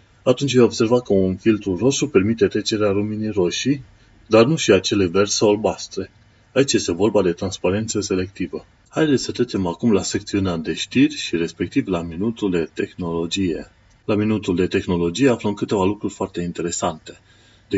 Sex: male